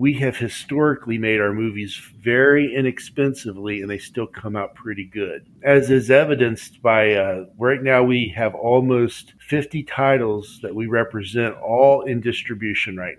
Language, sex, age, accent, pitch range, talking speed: English, male, 50-69, American, 105-130 Hz, 155 wpm